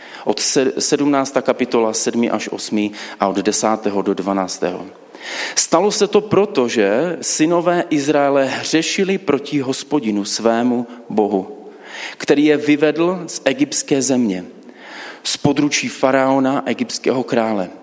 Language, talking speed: Czech, 115 wpm